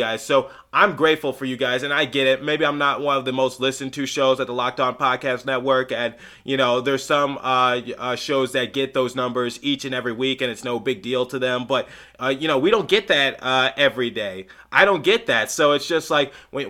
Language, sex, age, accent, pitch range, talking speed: English, male, 20-39, American, 130-150 Hz, 250 wpm